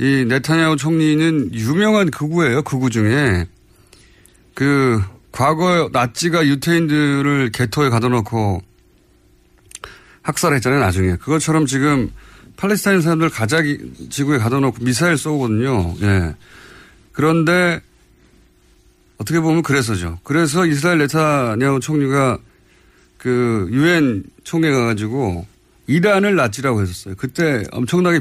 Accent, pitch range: native, 105-160 Hz